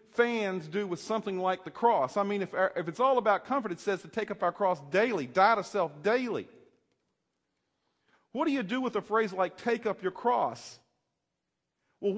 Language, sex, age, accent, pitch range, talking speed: English, male, 40-59, American, 185-230 Hz, 195 wpm